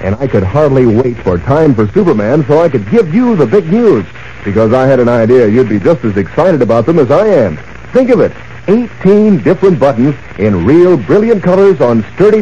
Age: 60-79